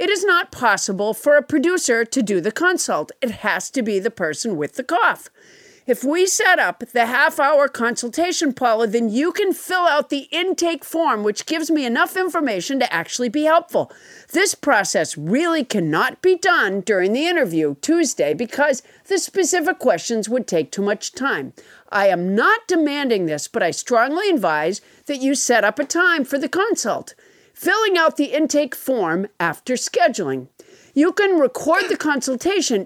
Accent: American